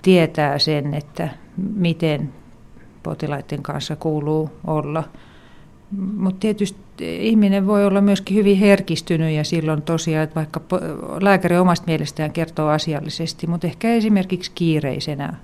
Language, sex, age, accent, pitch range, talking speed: Finnish, female, 50-69, native, 150-175 Hz, 115 wpm